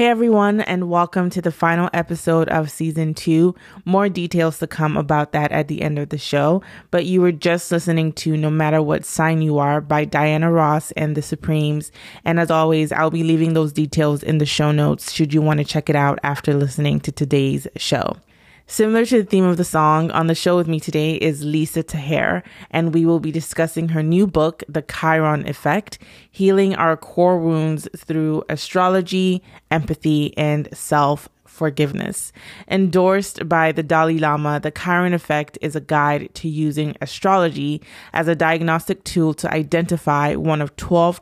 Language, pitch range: English, 150-170 Hz